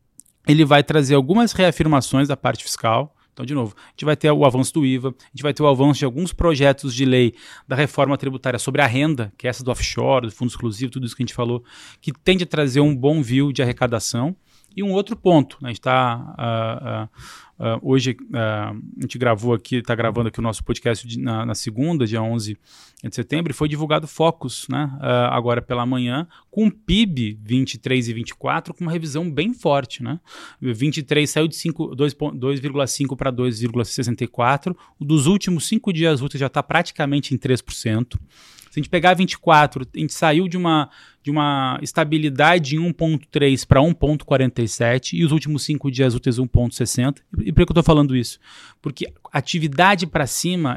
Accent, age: Brazilian, 20-39